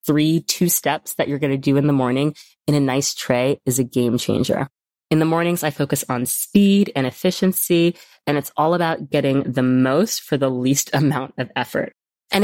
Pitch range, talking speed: 130-160 Hz, 205 wpm